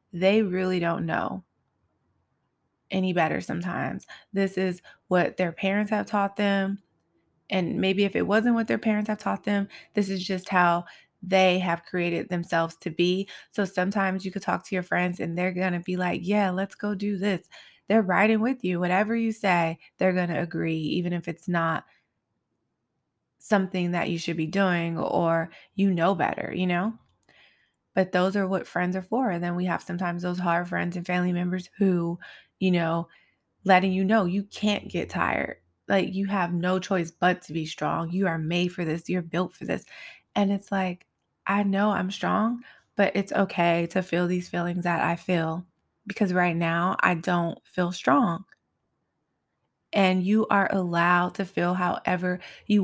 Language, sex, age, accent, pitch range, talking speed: English, female, 20-39, American, 175-195 Hz, 180 wpm